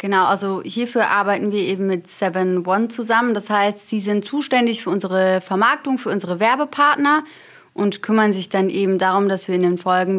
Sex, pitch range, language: female, 190-225 Hz, German